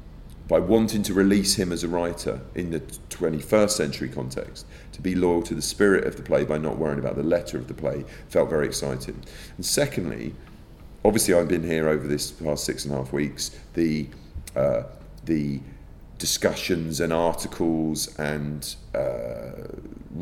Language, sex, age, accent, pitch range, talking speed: English, male, 40-59, British, 75-85 Hz, 165 wpm